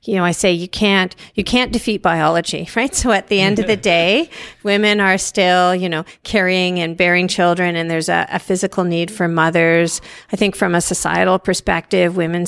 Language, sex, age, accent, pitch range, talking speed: English, female, 40-59, American, 165-195 Hz, 200 wpm